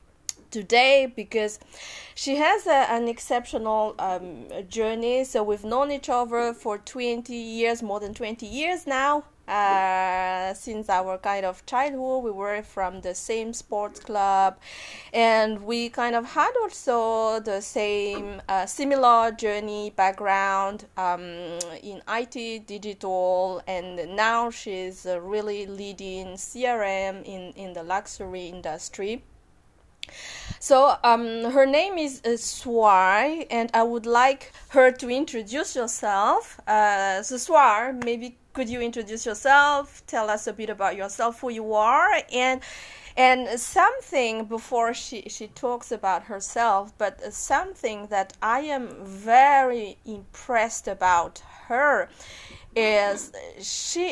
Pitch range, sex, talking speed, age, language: 195-250 Hz, female, 125 wpm, 20-39, English